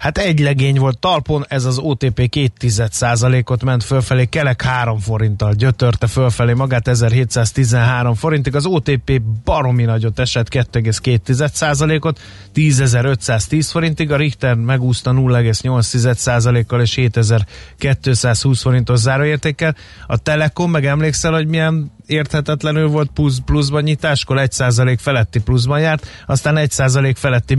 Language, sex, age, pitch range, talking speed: Hungarian, male, 30-49, 115-135 Hz, 120 wpm